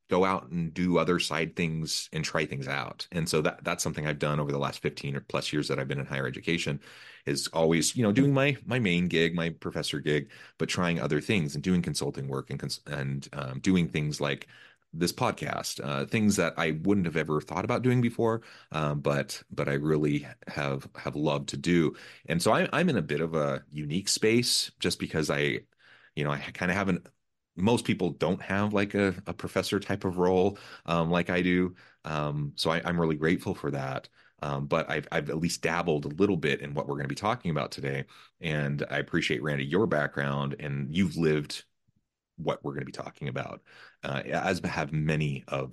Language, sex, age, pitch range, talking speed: English, male, 30-49, 70-90 Hz, 215 wpm